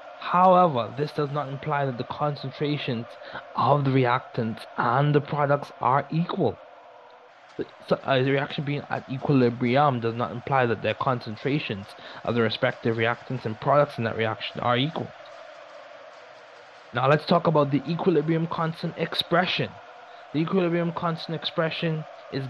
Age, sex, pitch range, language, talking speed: 20-39, male, 125-165 Hz, English, 140 wpm